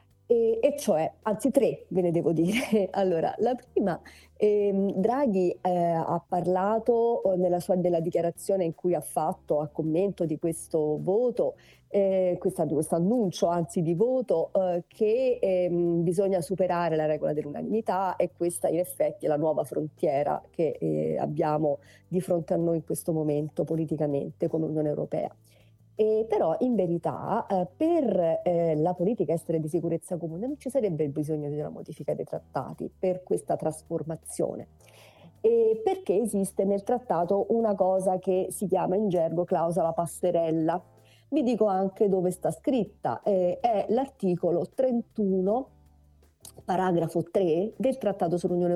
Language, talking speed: Italian, 150 wpm